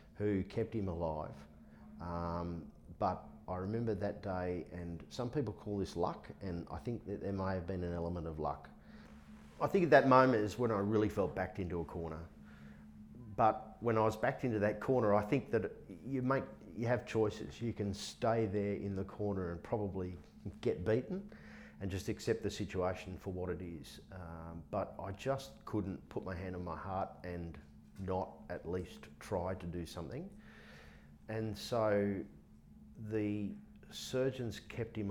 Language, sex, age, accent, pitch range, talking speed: English, male, 40-59, Australian, 85-105 Hz, 175 wpm